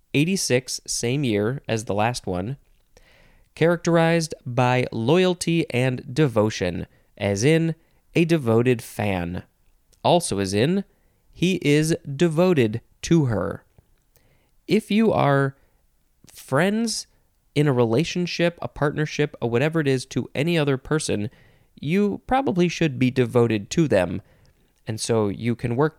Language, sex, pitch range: English, male, 110-150 Hz